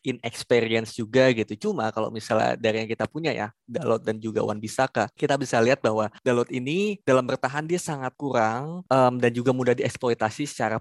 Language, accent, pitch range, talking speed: Indonesian, native, 115-140 Hz, 185 wpm